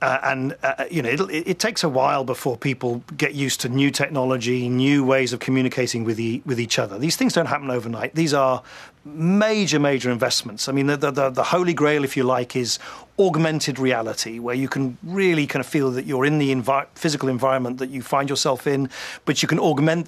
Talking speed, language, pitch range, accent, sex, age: 215 wpm, English, 130-165 Hz, British, male, 40-59